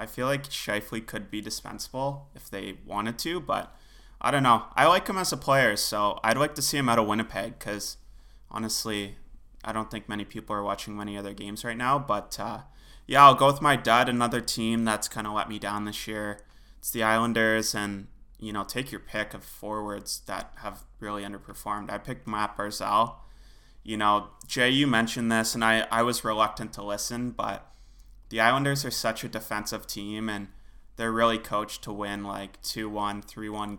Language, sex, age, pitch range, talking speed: English, male, 20-39, 105-115 Hz, 195 wpm